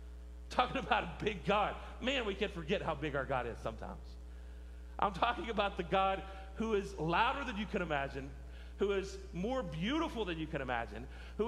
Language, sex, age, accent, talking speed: English, male, 40-59, American, 190 wpm